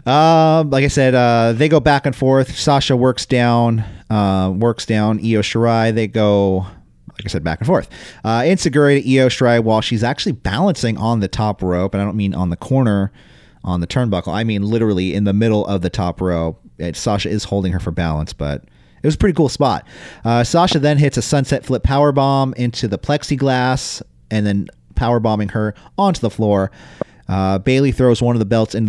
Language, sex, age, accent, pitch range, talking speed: English, male, 30-49, American, 95-125 Hz, 200 wpm